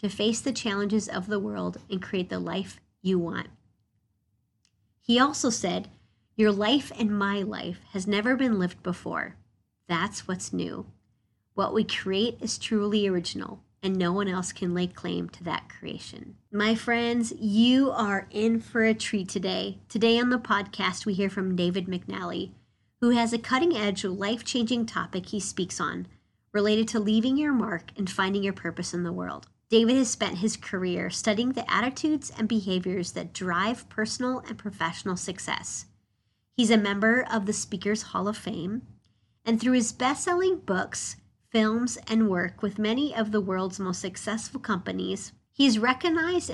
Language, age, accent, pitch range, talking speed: English, 30-49, American, 180-230 Hz, 165 wpm